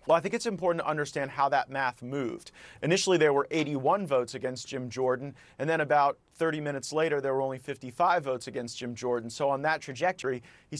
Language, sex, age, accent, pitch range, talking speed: English, male, 30-49, American, 135-155 Hz, 210 wpm